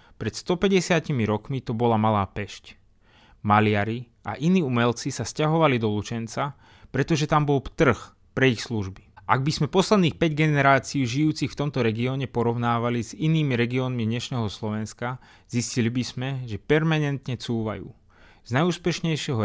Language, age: Slovak, 30-49